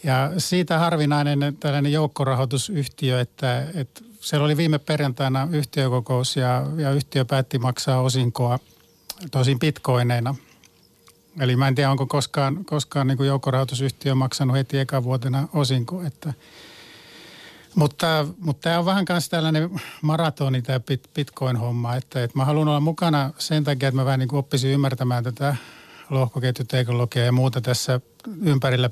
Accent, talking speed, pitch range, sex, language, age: native, 135 wpm, 130-155 Hz, male, Finnish, 50-69